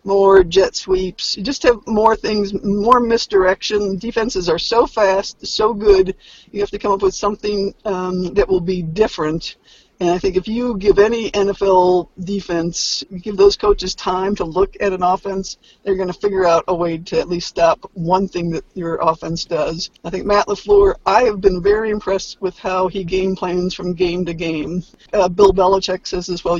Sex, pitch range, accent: female, 180-205 Hz, American